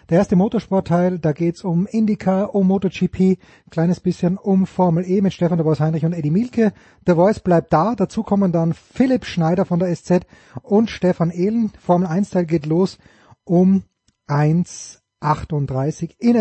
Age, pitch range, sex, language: 30-49, 165-200 Hz, male, German